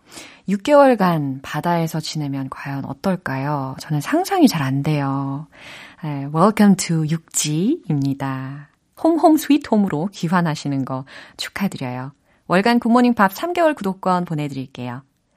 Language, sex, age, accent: Korean, female, 30-49, native